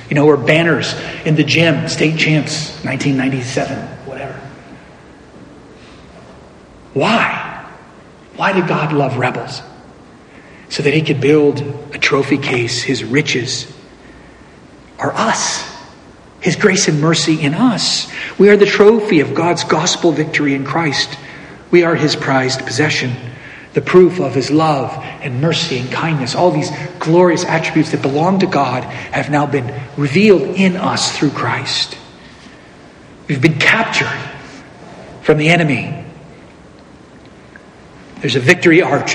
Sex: male